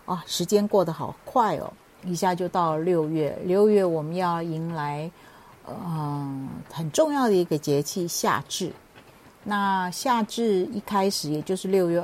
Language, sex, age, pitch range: Chinese, female, 50-69, 160-205 Hz